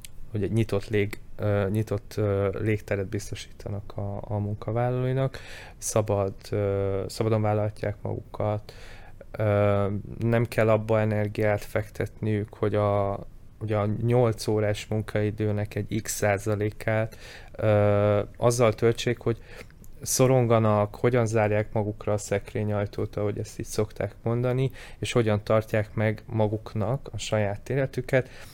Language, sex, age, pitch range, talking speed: Hungarian, male, 20-39, 100-115 Hz, 110 wpm